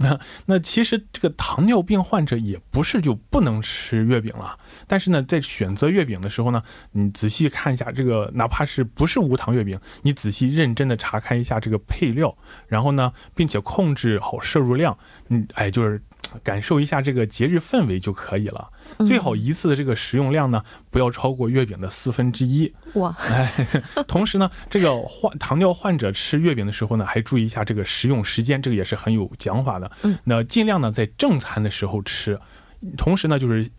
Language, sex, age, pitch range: Korean, male, 20-39, 110-150 Hz